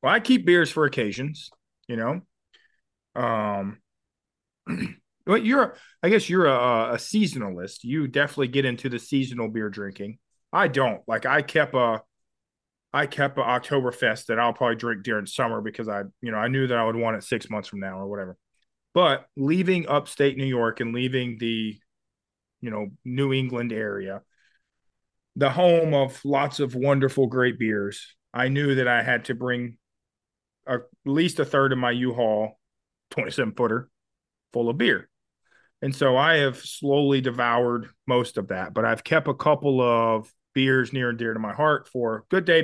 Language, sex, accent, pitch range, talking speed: English, male, American, 115-150 Hz, 175 wpm